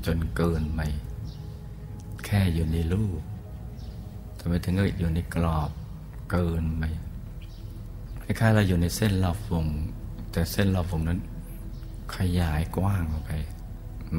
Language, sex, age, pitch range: Thai, male, 60-79, 85-105 Hz